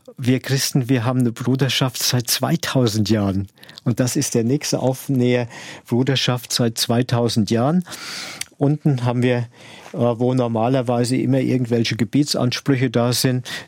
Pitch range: 120-135 Hz